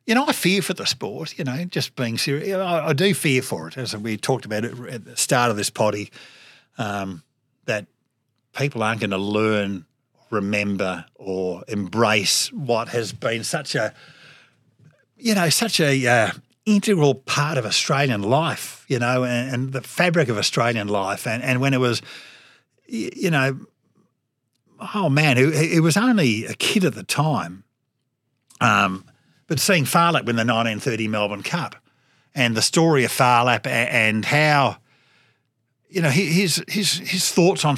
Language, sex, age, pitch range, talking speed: English, male, 50-69, 120-165 Hz, 160 wpm